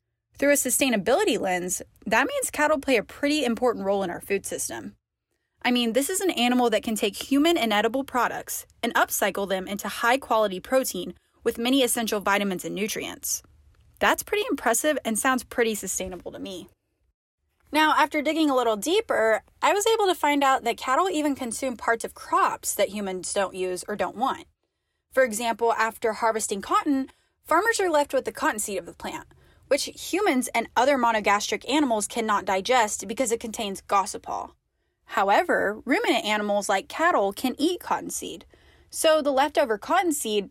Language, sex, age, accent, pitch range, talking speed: English, female, 10-29, American, 210-285 Hz, 170 wpm